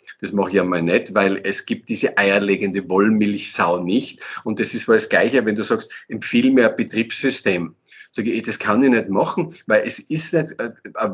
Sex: male